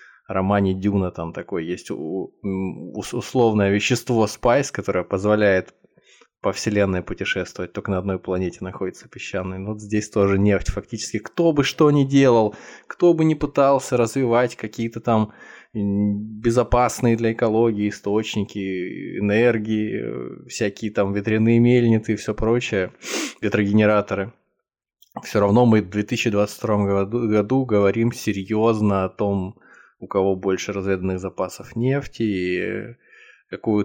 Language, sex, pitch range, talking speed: Russian, male, 95-115 Hz, 120 wpm